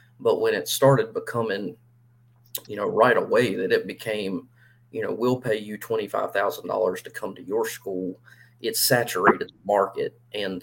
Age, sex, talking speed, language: 30-49, male, 175 wpm, English